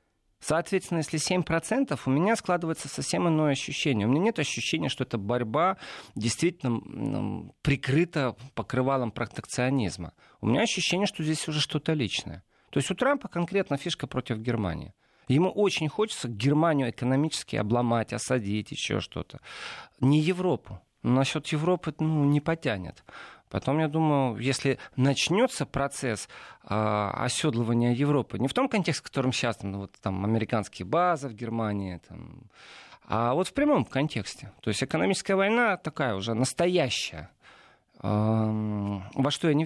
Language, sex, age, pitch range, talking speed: Russian, male, 40-59, 115-160 Hz, 140 wpm